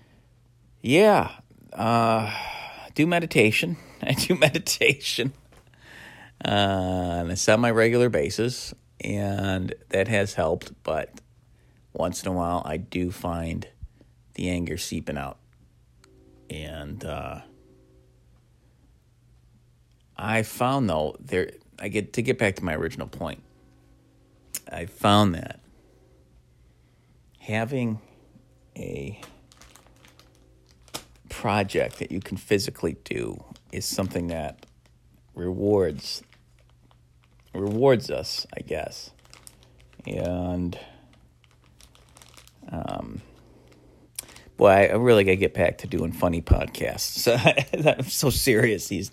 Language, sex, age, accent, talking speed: English, male, 40-59, American, 100 wpm